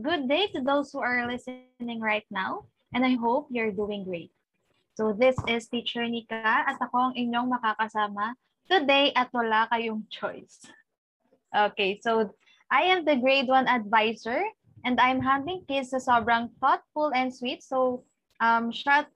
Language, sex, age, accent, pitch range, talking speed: Filipino, female, 20-39, native, 220-275 Hz, 150 wpm